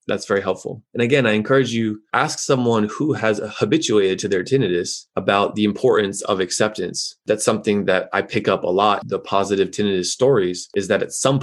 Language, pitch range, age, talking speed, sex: English, 105-115 Hz, 20-39, 195 wpm, male